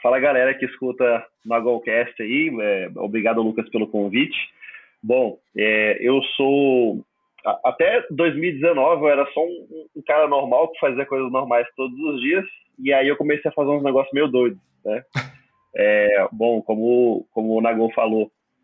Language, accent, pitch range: Portuguese, Brazilian, 115-140 Hz